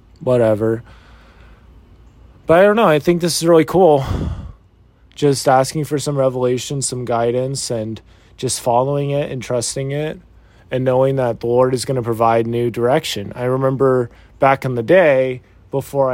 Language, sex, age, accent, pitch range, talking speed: English, male, 30-49, American, 110-130 Hz, 160 wpm